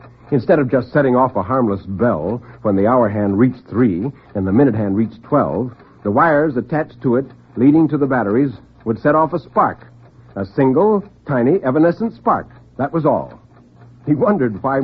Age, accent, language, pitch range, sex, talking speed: 60-79, American, English, 100-130 Hz, male, 180 wpm